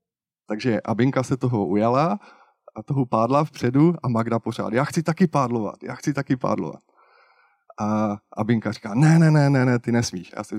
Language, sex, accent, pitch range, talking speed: Czech, male, native, 110-150 Hz, 175 wpm